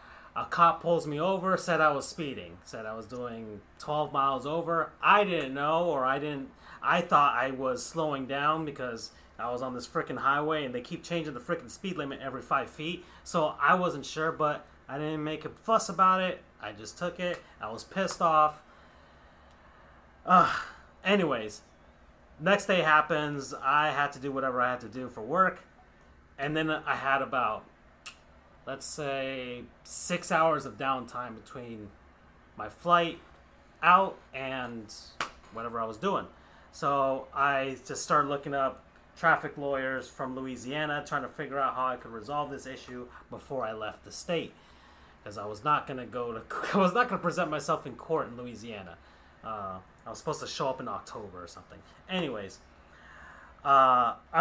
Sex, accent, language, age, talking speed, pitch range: male, American, English, 30-49, 170 wpm, 115-155 Hz